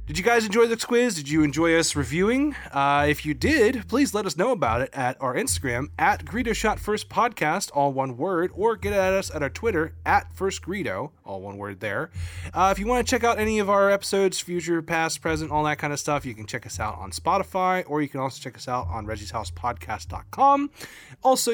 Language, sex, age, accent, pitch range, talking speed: English, male, 20-39, American, 125-190 Hz, 230 wpm